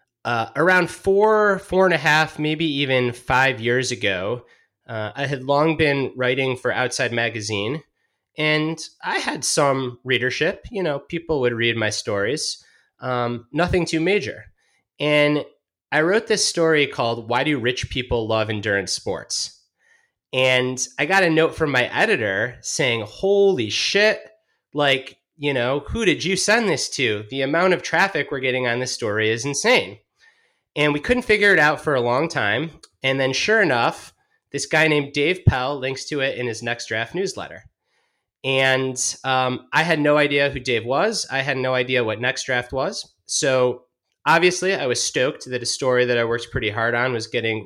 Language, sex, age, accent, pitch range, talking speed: English, male, 30-49, American, 125-160 Hz, 180 wpm